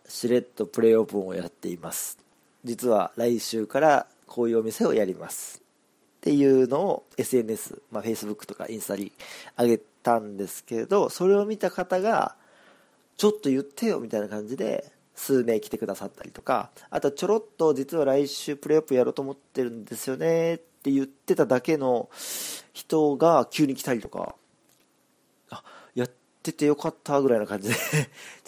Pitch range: 115-155 Hz